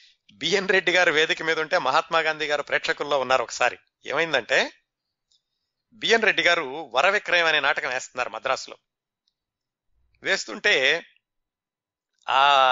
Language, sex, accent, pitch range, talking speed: Telugu, male, native, 140-185 Hz, 115 wpm